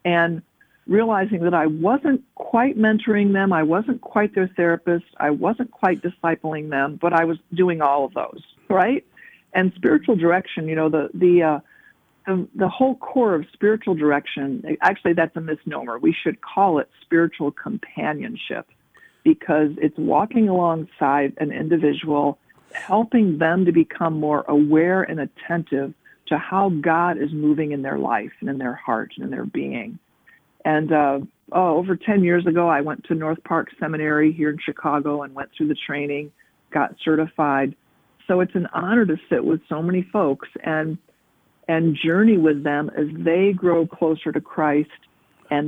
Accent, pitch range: American, 150-185 Hz